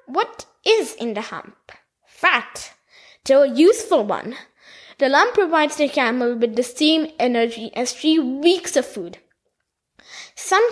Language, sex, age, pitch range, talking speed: English, female, 20-39, 235-355 Hz, 140 wpm